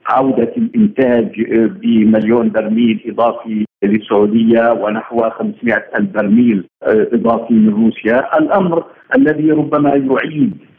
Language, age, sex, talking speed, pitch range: Arabic, 50-69, male, 90 wpm, 120-160 Hz